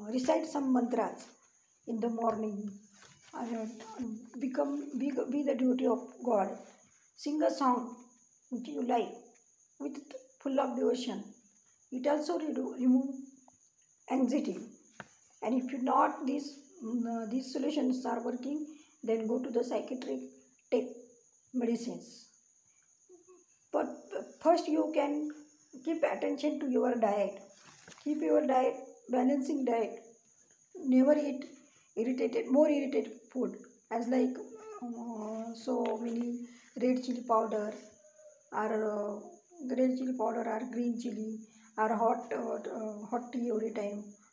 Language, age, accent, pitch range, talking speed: English, 50-69, Indian, 225-265 Hz, 115 wpm